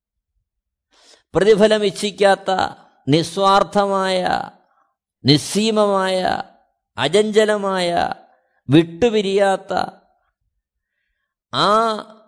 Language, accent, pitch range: Malayalam, native, 160-235 Hz